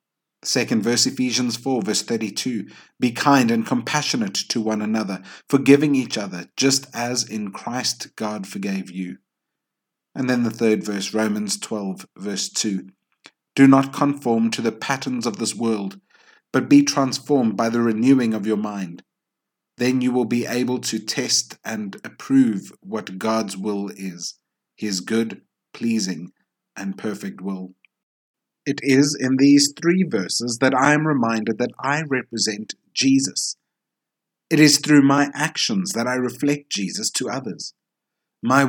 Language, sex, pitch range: English, male, 110-145 Hz